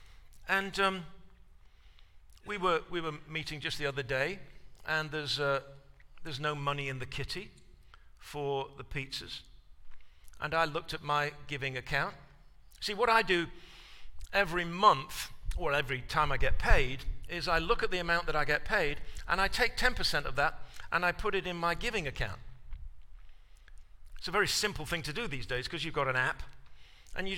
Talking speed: 180 wpm